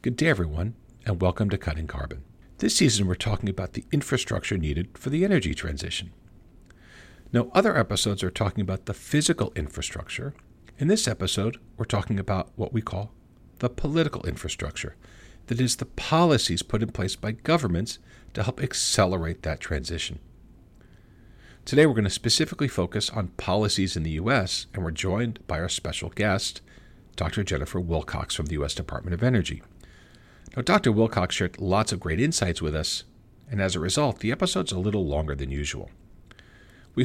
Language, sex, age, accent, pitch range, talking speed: English, male, 50-69, American, 85-120 Hz, 165 wpm